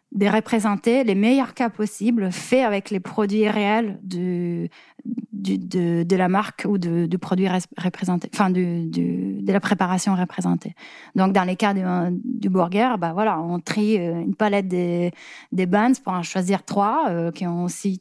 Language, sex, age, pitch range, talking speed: French, female, 20-39, 170-215 Hz, 175 wpm